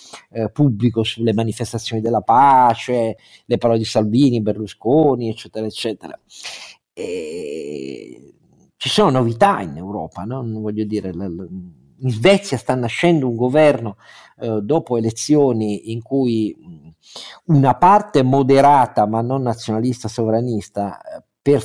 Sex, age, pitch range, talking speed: male, 50-69, 115-155 Hz, 120 wpm